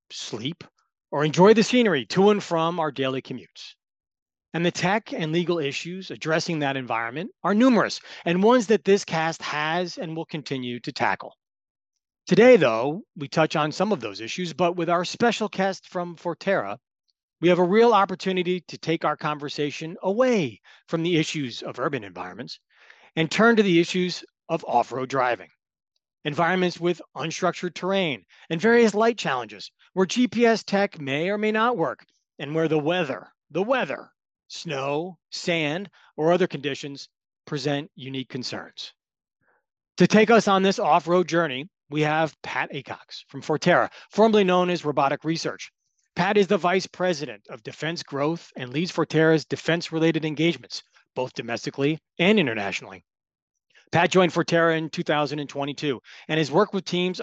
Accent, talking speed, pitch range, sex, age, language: American, 155 wpm, 145-185 Hz, male, 40-59, English